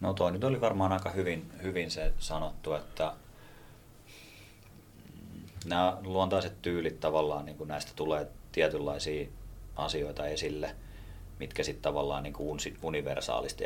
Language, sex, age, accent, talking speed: English, male, 30-49, Finnish, 95 wpm